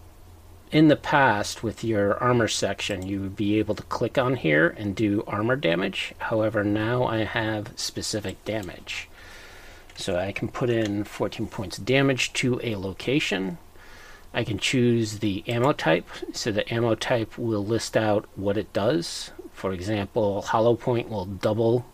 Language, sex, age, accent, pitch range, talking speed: English, male, 40-59, American, 100-125 Hz, 160 wpm